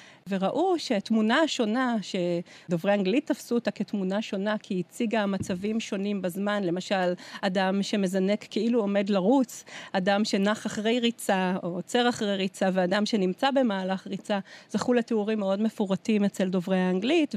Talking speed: 135 wpm